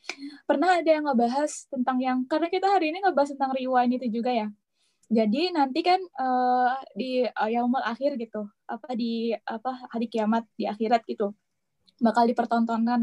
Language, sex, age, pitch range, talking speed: Indonesian, female, 10-29, 235-300 Hz, 160 wpm